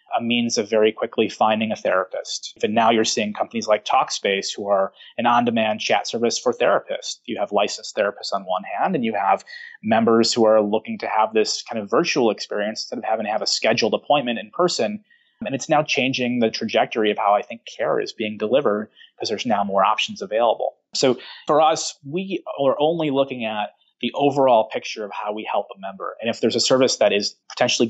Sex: male